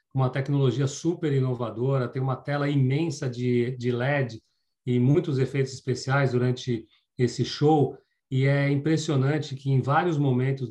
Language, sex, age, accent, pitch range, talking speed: Portuguese, male, 40-59, Brazilian, 125-145 Hz, 140 wpm